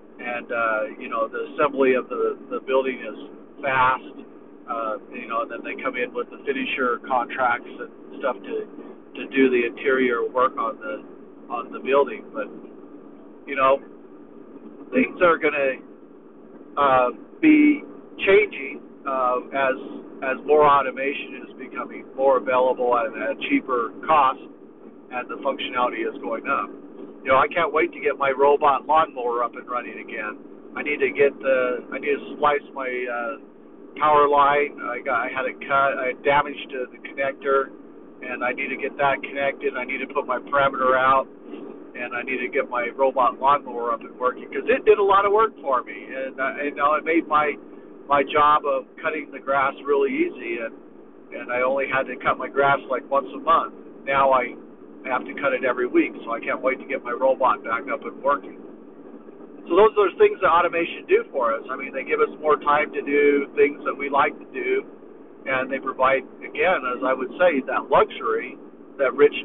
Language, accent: English, American